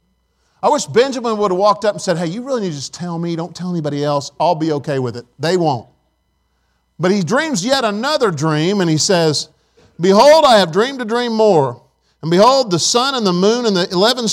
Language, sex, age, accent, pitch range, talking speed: English, male, 50-69, American, 150-210 Hz, 225 wpm